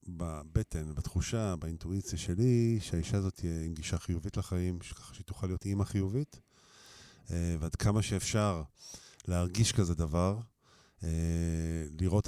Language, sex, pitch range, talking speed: Hebrew, male, 85-105 Hz, 110 wpm